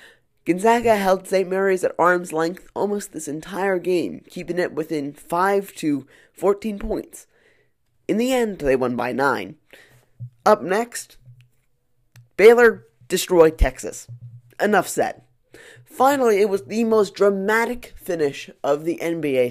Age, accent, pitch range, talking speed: 20-39, American, 130-220 Hz, 125 wpm